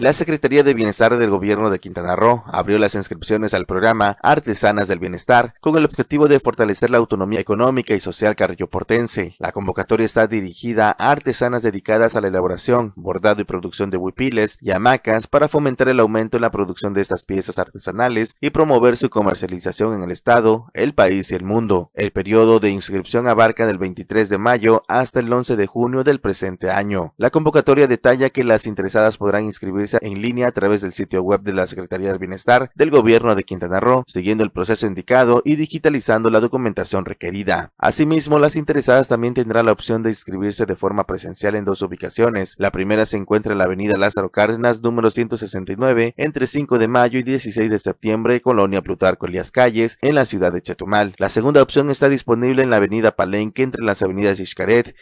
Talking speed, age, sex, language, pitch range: 190 wpm, 30-49, male, Spanish, 100-125 Hz